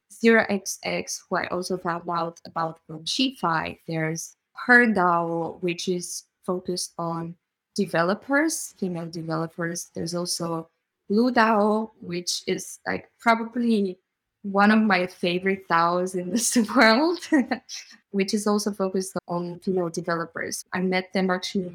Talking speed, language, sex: 130 wpm, English, female